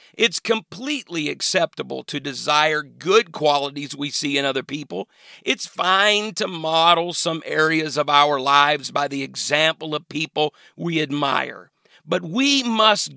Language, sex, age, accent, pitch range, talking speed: English, male, 50-69, American, 155-210 Hz, 140 wpm